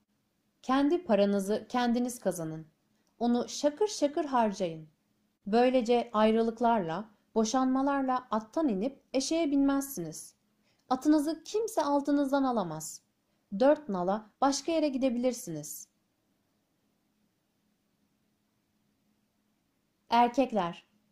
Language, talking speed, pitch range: Turkish, 70 wpm, 195-285 Hz